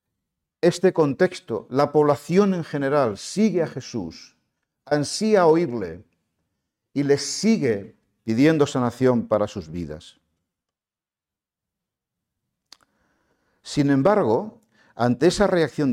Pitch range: 125-165 Hz